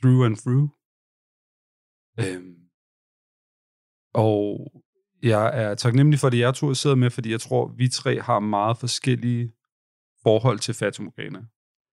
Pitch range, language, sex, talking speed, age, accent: 110-130 Hz, Danish, male, 120 wpm, 40-59, native